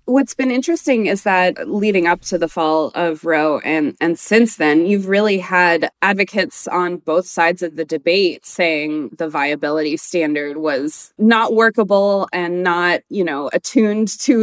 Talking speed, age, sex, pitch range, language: 160 wpm, 20-39, female, 165-205 Hz, English